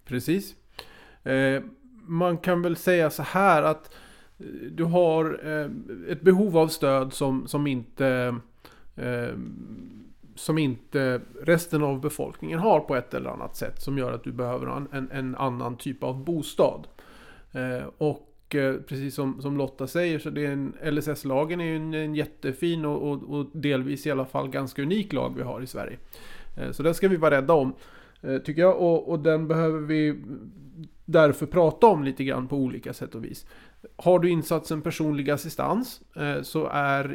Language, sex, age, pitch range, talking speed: Swedish, male, 30-49, 135-160 Hz, 150 wpm